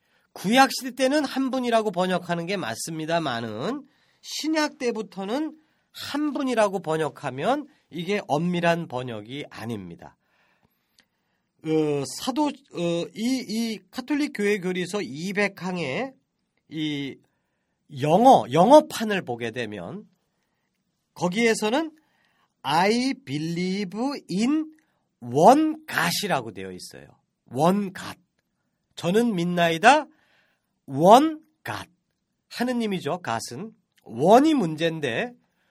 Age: 40-59